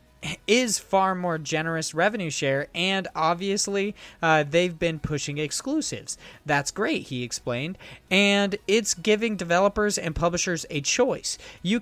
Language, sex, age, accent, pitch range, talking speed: English, male, 20-39, American, 160-205 Hz, 130 wpm